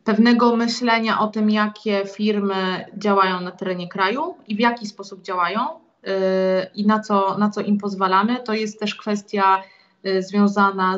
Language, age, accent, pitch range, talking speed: Polish, 20-39, native, 195-210 Hz, 150 wpm